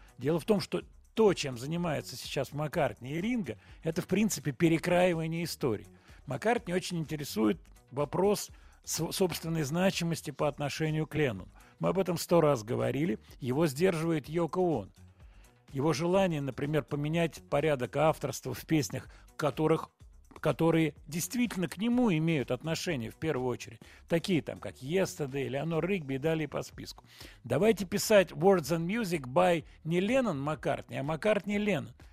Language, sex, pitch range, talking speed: Russian, male, 125-175 Hz, 140 wpm